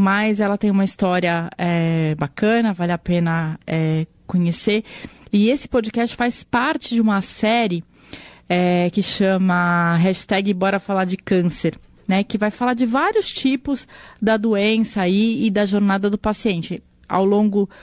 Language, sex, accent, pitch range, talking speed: Portuguese, female, Brazilian, 185-220 Hz, 140 wpm